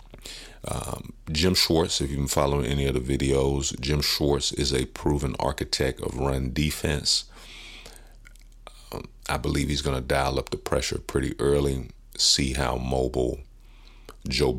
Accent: American